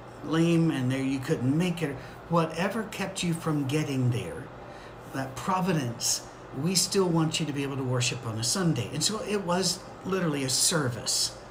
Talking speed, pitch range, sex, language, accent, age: 175 wpm, 130-170 Hz, male, English, American, 50-69